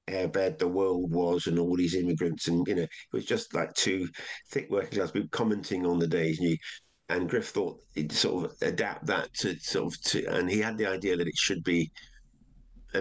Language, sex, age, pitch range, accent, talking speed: English, male, 50-69, 85-110 Hz, British, 220 wpm